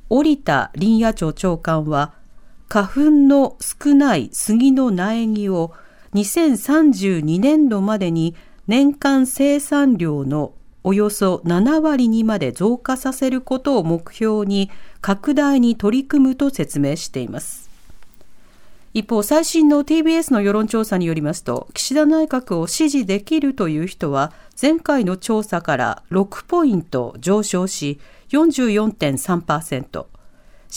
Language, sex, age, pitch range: Japanese, female, 50-69, 175-265 Hz